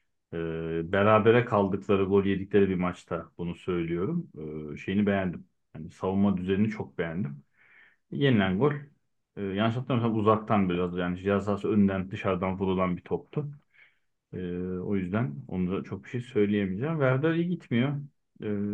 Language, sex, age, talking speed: Turkish, male, 40-59, 140 wpm